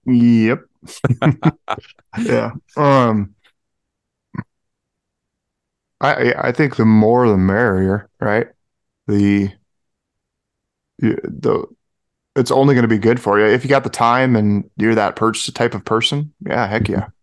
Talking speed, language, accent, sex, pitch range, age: 125 wpm, English, American, male, 100-120 Hz, 30-49